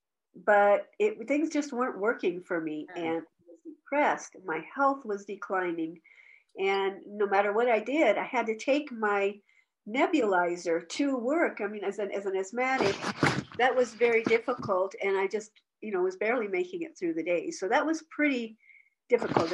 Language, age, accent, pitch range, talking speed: English, 50-69, American, 205-300 Hz, 175 wpm